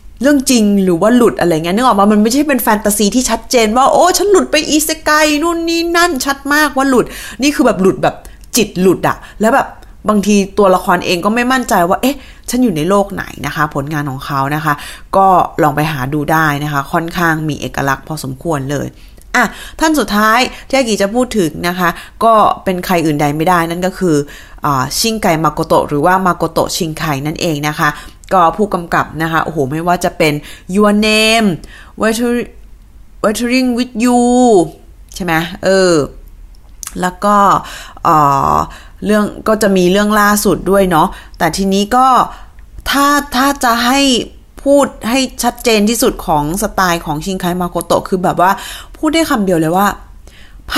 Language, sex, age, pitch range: Thai, female, 20-39, 165-245 Hz